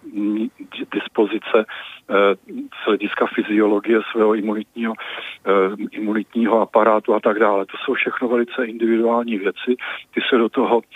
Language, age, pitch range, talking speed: Czech, 50-69, 105-115 Hz, 120 wpm